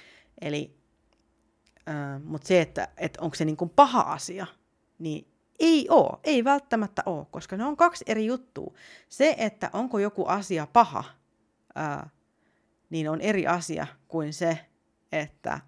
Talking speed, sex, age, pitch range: 140 wpm, female, 30-49, 140-190 Hz